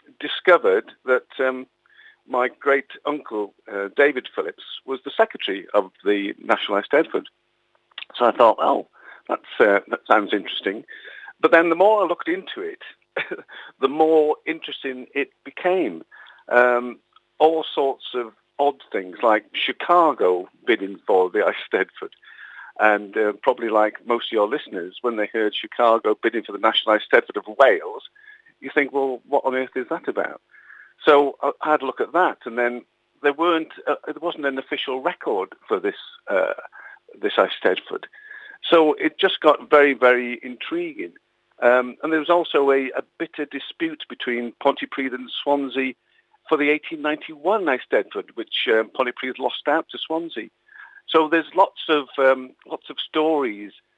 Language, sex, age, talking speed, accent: English, male, 50-69, 155 wpm, British